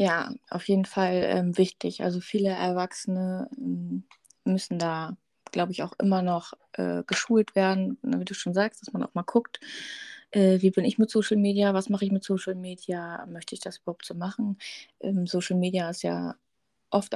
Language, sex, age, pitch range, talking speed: German, female, 20-39, 180-215 Hz, 185 wpm